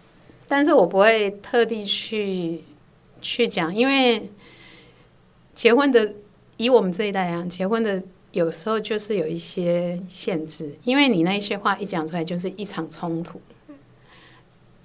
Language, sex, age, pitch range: Chinese, female, 50-69, 165-210 Hz